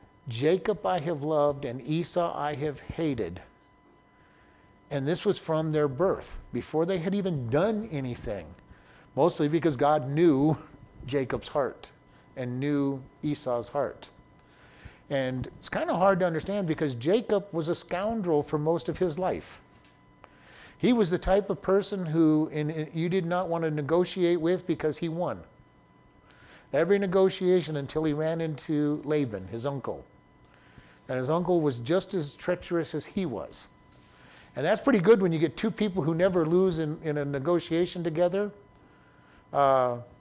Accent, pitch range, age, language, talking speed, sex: American, 140-175 Hz, 50-69, English, 150 wpm, male